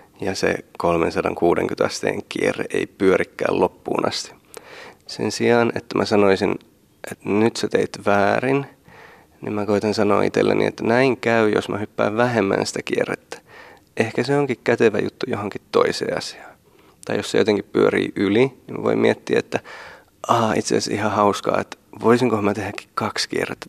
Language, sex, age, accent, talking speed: Finnish, male, 30-49, native, 160 wpm